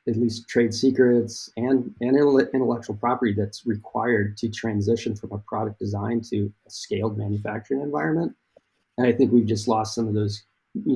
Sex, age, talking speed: male, 40-59, 170 wpm